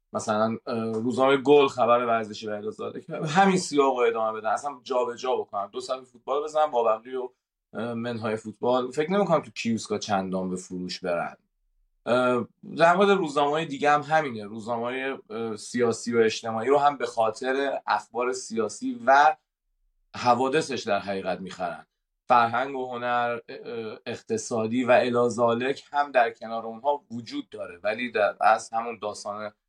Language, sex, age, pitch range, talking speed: Persian, male, 30-49, 110-135 Hz, 135 wpm